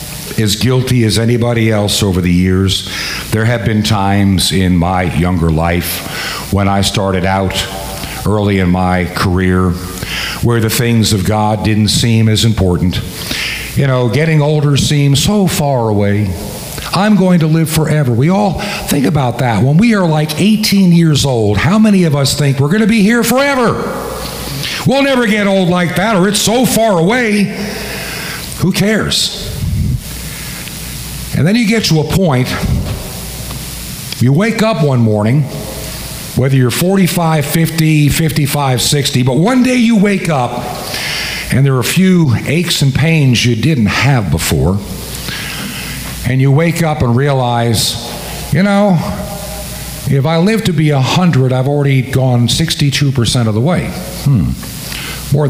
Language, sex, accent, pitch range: English, male, American, 110-165 Hz